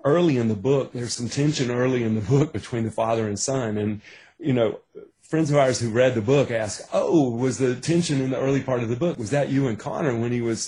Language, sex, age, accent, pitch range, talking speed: English, male, 30-49, American, 100-125 Hz, 260 wpm